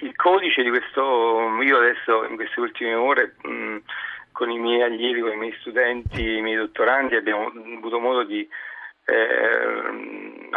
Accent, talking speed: native, 155 wpm